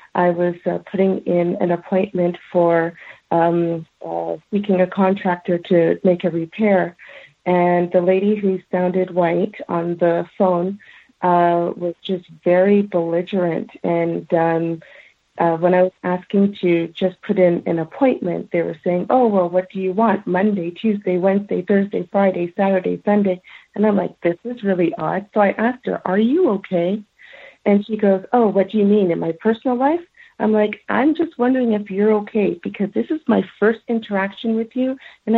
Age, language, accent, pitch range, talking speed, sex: 50-69, English, American, 175-210 Hz, 175 wpm, female